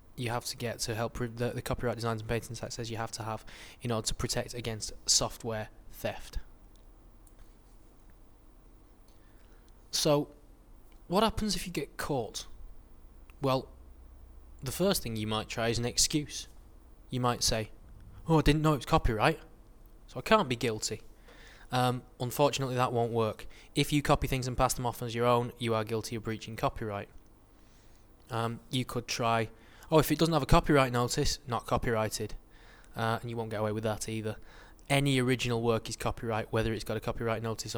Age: 20-39